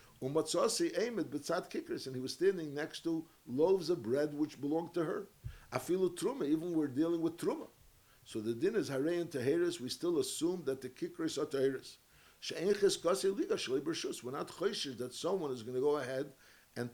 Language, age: English, 60-79